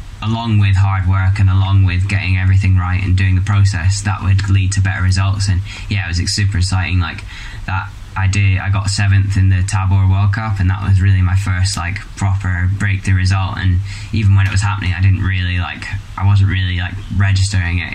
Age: 10-29